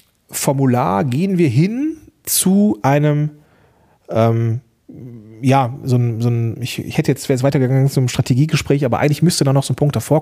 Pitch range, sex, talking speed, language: 110-140 Hz, male, 170 wpm, German